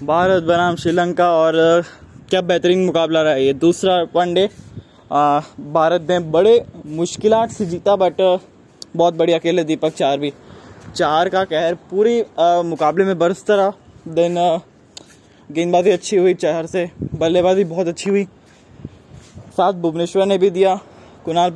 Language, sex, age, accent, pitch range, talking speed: Hindi, male, 20-39, native, 170-205 Hz, 135 wpm